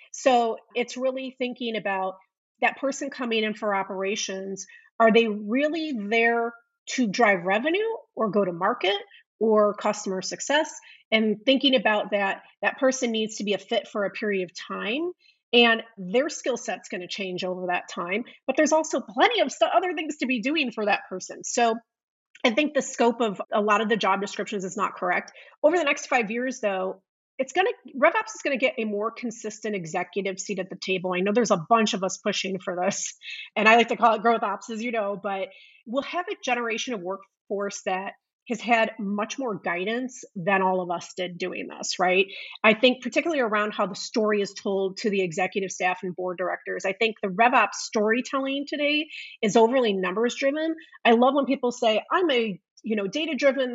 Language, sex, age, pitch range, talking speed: English, female, 30-49, 200-265 Hz, 200 wpm